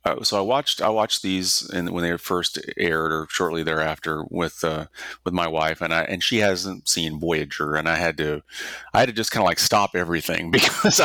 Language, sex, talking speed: English, male, 230 wpm